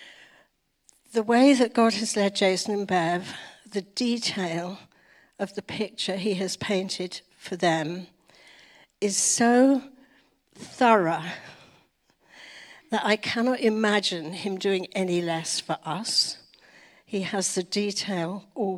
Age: 60-79